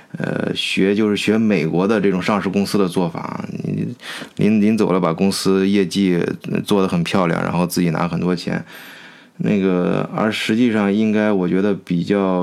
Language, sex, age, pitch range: Chinese, male, 20-39, 95-115 Hz